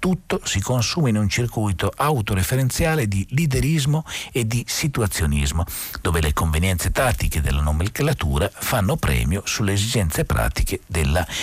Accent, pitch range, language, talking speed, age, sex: native, 80-110 Hz, Italian, 125 wpm, 50-69, male